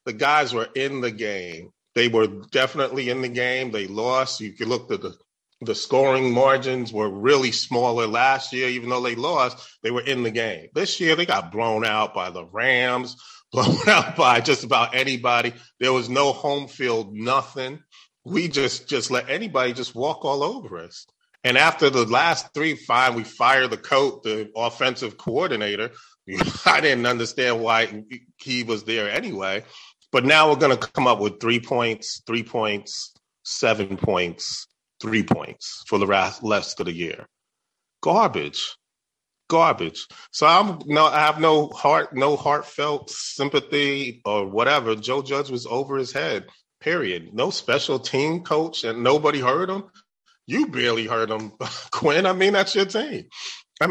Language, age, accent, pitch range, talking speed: English, 30-49, American, 115-150 Hz, 165 wpm